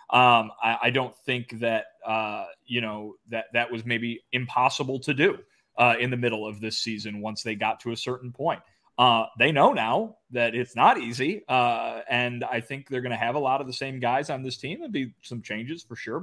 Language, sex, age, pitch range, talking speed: English, male, 30-49, 120-150 Hz, 225 wpm